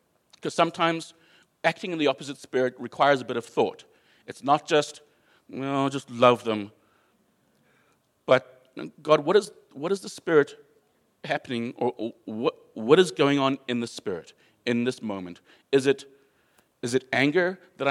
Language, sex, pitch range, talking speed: English, male, 115-150 Hz, 160 wpm